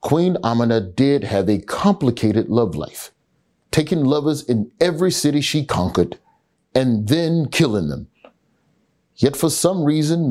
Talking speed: 135 wpm